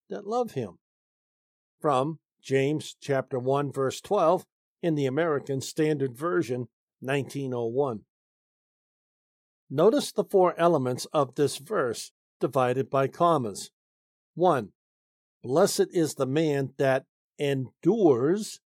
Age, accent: 60-79, American